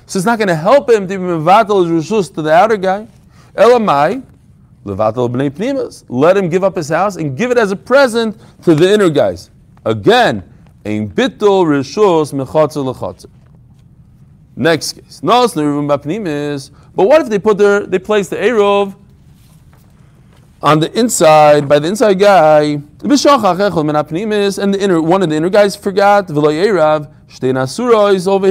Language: English